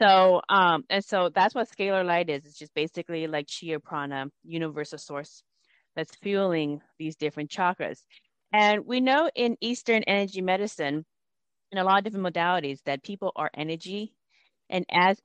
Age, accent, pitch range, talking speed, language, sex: 30-49, American, 160-200 Hz, 160 wpm, English, female